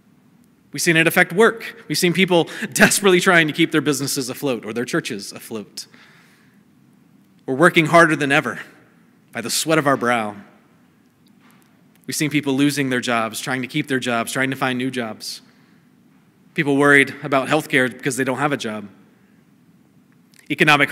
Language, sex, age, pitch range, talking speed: English, male, 30-49, 130-165 Hz, 165 wpm